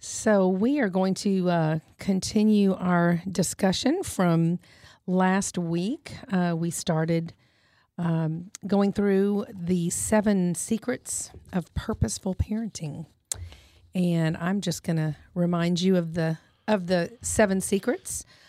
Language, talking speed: English, 120 wpm